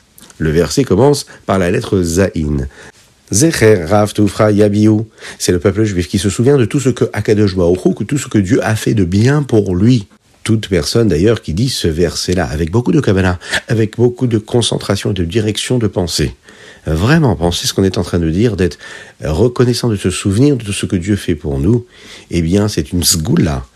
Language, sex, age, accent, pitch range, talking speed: French, male, 50-69, French, 85-115 Hz, 210 wpm